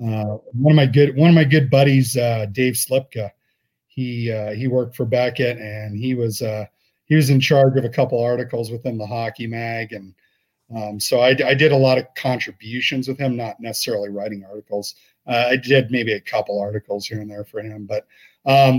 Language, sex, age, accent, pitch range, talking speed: English, male, 40-59, American, 110-135 Hz, 210 wpm